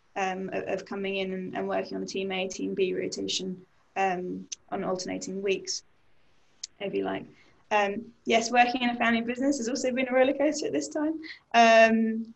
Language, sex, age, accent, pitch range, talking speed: English, female, 10-29, British, 195-230 Hz, 180 wpm